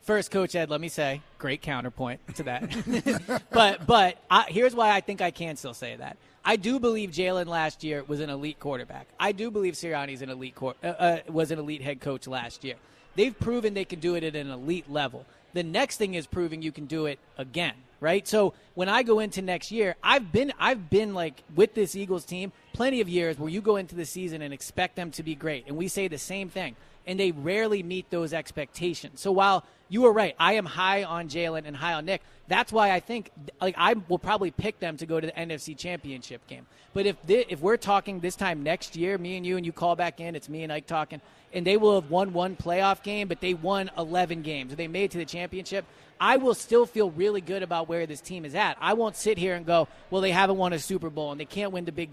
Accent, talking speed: American, 250 wpm